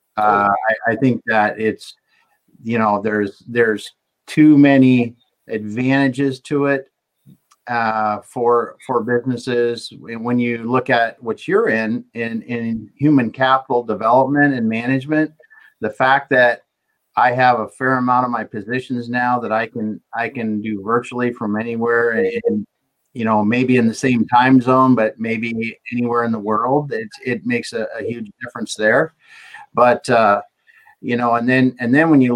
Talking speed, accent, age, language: 160 wpm, American, 50-69, English